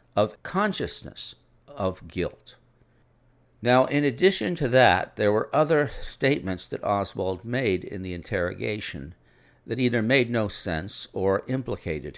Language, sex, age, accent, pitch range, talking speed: English, male, 60-79, American, 90-120 Hz, 130 wpm